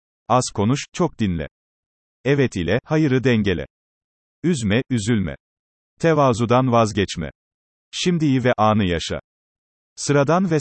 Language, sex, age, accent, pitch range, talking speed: Turkish, male, 40-59, native, 105-140 Hz, 100 wpm